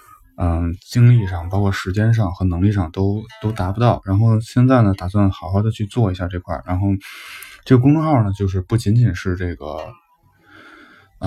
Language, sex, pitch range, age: Chinese, male, 90-110 Hz, 20-39